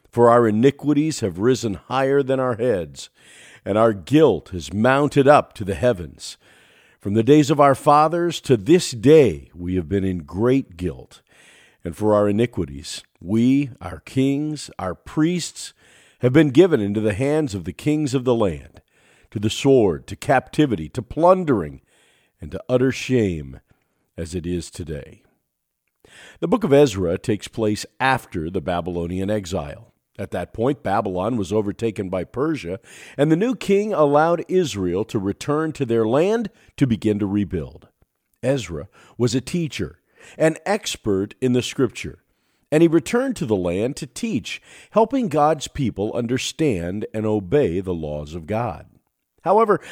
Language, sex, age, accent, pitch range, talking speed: English, male, 50-69, American, 95-145 Hz, 155 wpm